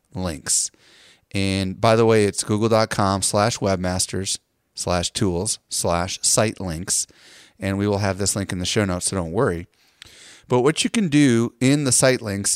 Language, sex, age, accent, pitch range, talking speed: English, male, 30-49, American, 100-115 Hz, 170 wpm